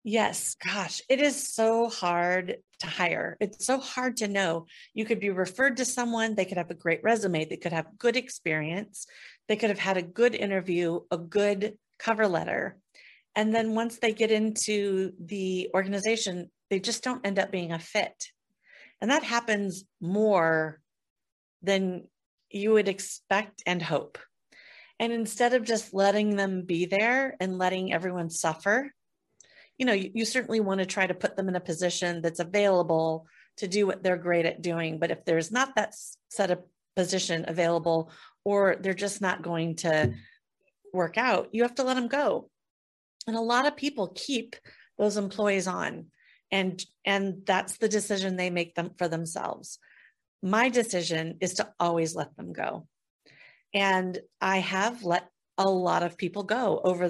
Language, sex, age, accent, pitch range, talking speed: English, female, 40-59, American, 175-220 Hz, 170 wpm